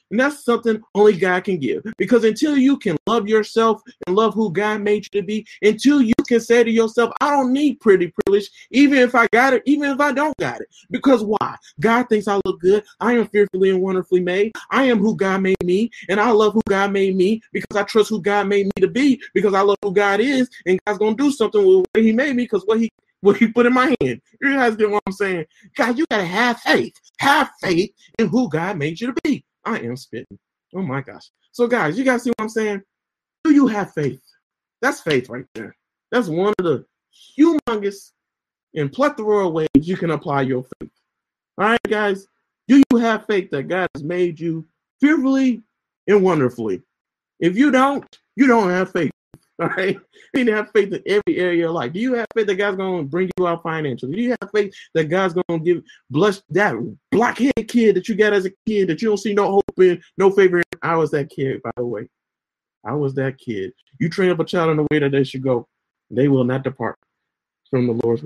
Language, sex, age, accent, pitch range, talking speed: English, male, 30-49, American, 180-235 Hz, 230 wpm